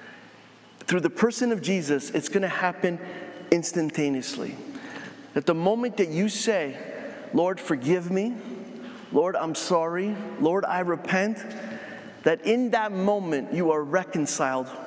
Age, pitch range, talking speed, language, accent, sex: 30-49, 155-230 Hz, 130 wpm, English, American, male